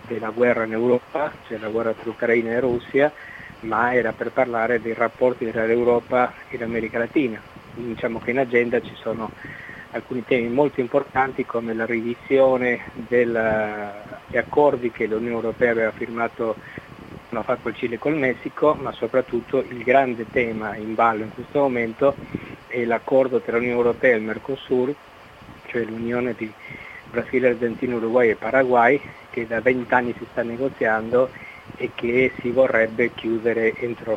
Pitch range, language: 115-125 Hz, Italian